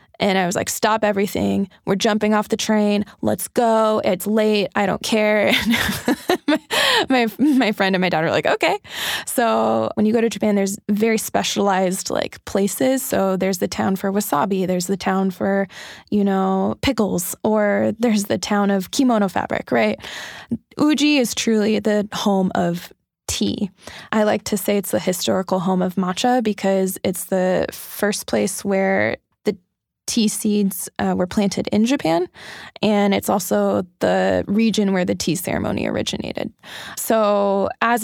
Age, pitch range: 20-39, 190-220 Hz